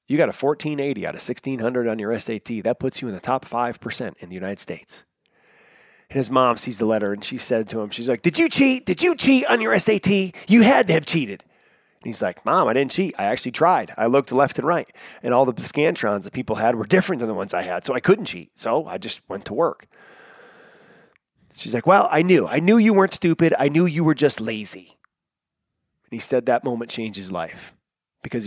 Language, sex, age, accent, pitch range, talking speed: English, male, 30-49, American, 115-145 Hz, 235 wpm